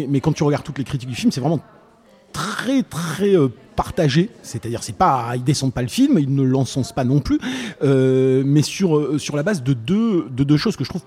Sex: male